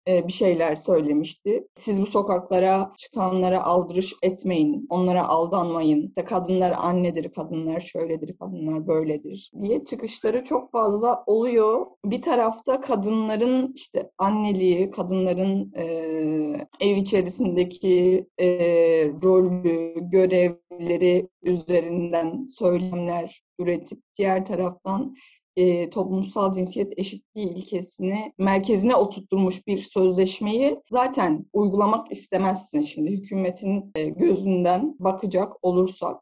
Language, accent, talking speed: Turkish, native, 95 wpm